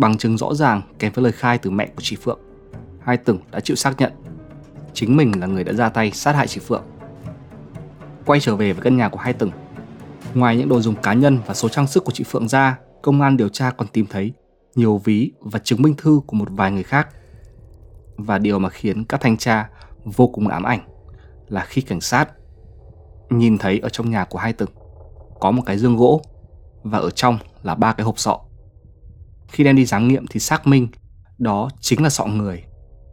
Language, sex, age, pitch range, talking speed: Vietnamese, male, 20-39, 95-125 Hz, 215 wpm